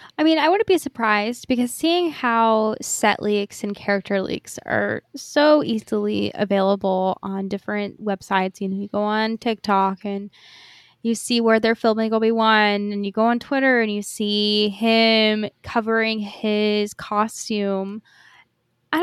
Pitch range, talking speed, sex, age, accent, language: 195-235 Hz, 150 wpm, female, 10-29, American, English